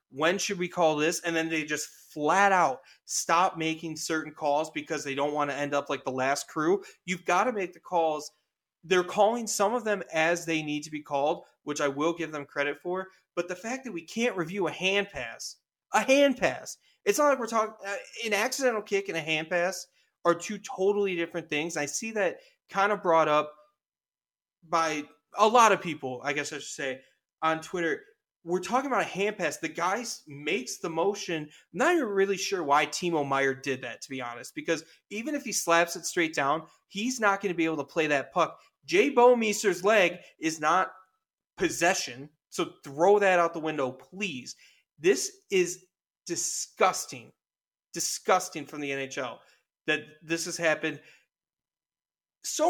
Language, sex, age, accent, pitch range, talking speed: English, male, 30-49, American, 155-205 Hz, 190 wpm